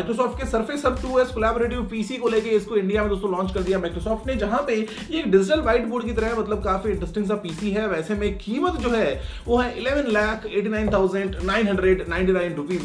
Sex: male